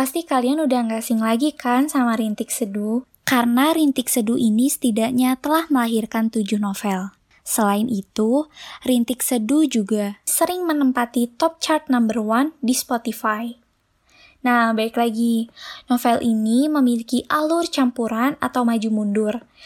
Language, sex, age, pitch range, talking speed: Indonesian, female, 10-29, 230-280 Hz, 130 wpm